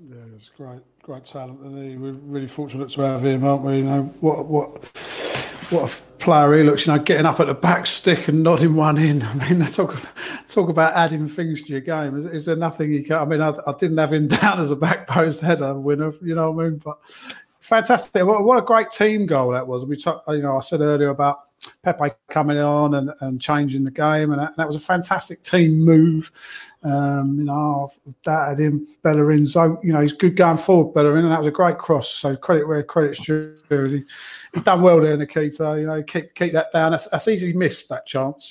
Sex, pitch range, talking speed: male, 145-170 Hz, 235 wpm